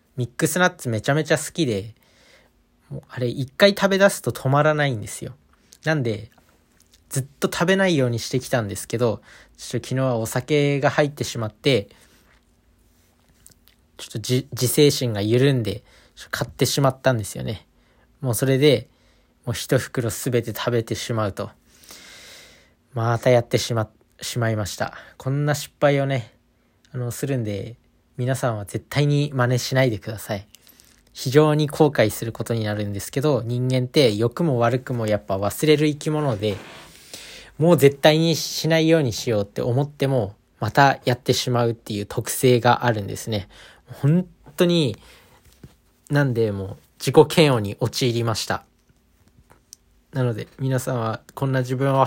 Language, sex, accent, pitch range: Japanese, male, native, 115-140 Hz